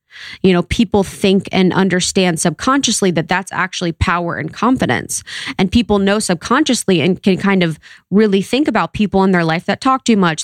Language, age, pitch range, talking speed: English, 20-39, 170-200 Hz, 185 wpm